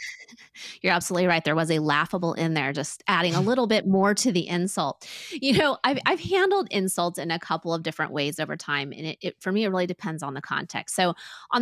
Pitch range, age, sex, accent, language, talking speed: 160-210 Hz, 30-49, female, American, English, 230 wpm